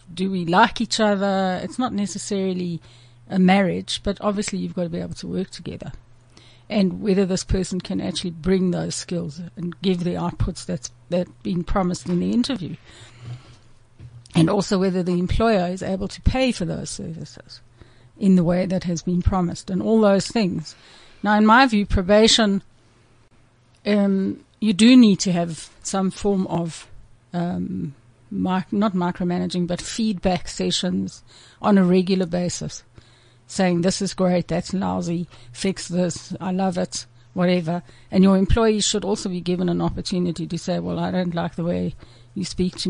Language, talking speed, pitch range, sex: English, 165 wpm, 155-195 Hz, female